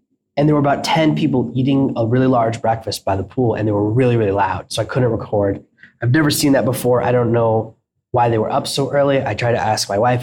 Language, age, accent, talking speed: English, 20-39, American, 260 wpm